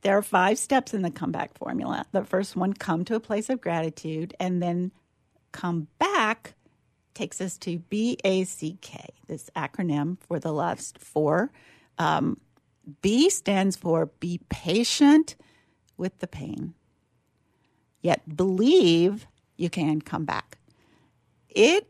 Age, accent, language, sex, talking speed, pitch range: 50-69, American, English, female, 130 wpm, 170-230 Hz